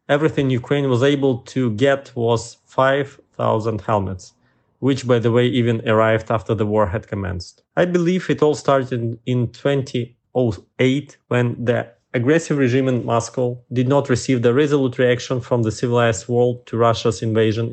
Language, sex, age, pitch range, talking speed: English, male, 20-39, 115-135 Hz, 155 wpm